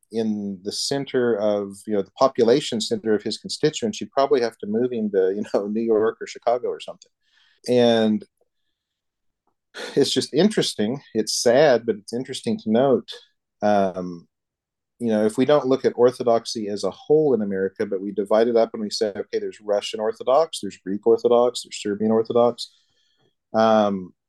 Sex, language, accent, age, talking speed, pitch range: male, English, American, 40-59, 180 wpm, 105-135 Hz